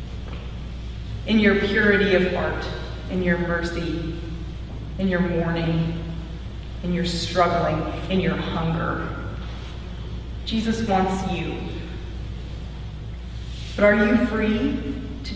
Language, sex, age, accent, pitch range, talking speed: English, female, 30-49, American, 165-210 Hz, 100 wpm